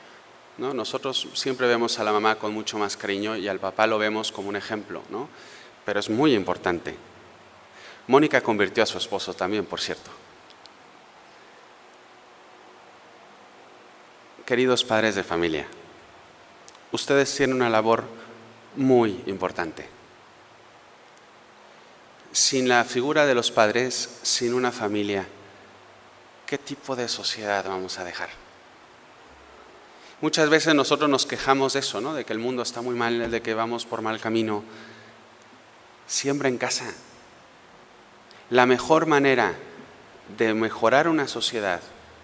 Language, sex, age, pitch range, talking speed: Spanish, male, 30-49, 105-125 Hz, 125 wpm